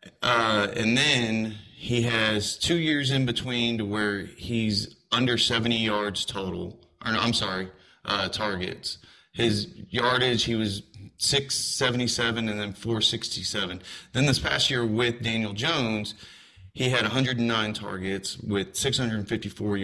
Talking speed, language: 130 wpm, English